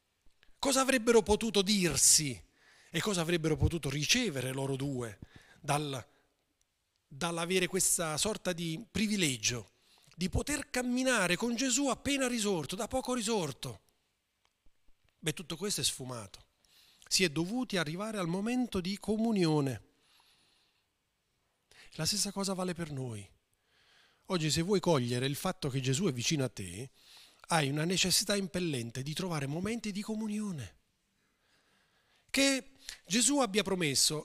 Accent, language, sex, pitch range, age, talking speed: native, Italian, male, 145-210 Hz, 30-49, 125 wpm